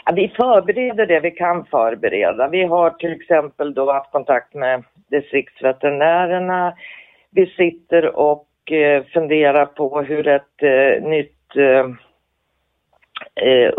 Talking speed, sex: 120 wpm, female